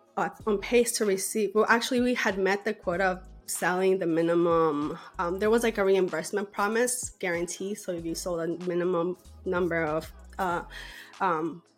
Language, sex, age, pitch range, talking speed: English, female, 20-39, 185-235 Hz, 175 wpm